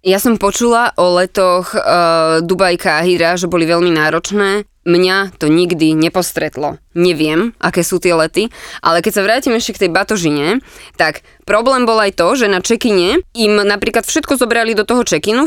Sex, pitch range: female, 175-230 Hz